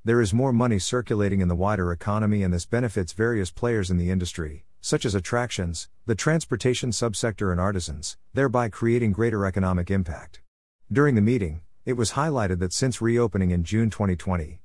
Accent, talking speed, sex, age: American, 170 wpm, male, 50-69